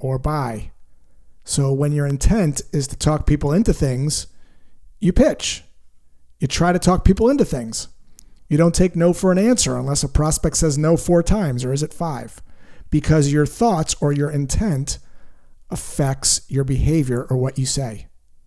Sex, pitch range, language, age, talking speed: male, 130-165 Hz, English, 40-59, 170 wpm